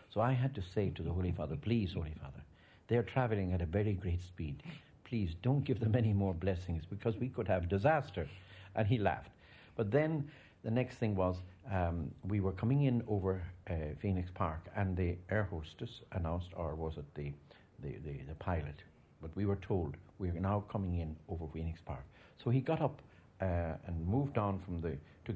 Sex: male